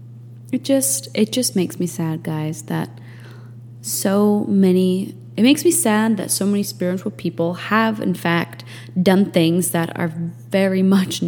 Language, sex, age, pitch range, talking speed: English, female, 20-39, 120-200 Hz, 155 wpm